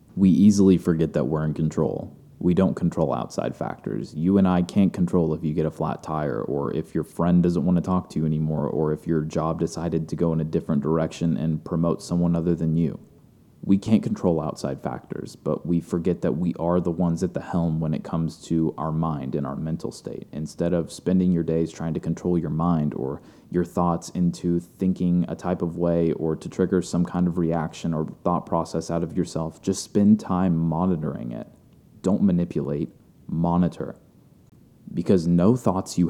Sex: male